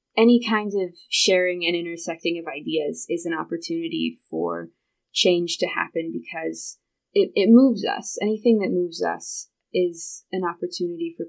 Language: English